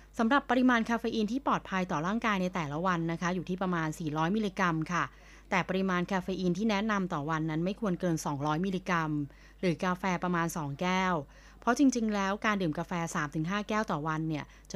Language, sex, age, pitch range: Thai, female, 20-39, 165-205 Hz